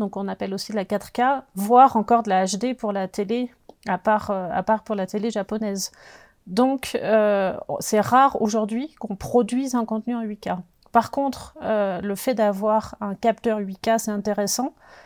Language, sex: French, female